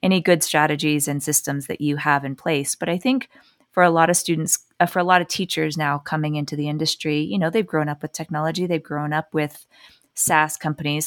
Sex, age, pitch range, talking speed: female, 20-39, 145-165 Hz, 230 wpm